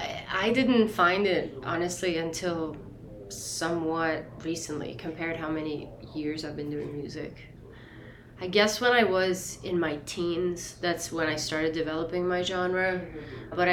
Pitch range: 155-180 Hz